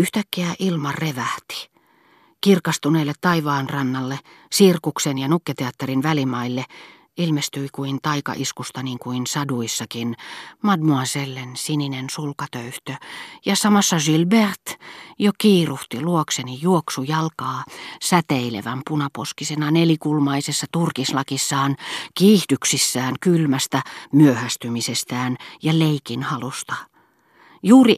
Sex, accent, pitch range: female, native, 130-170 Hz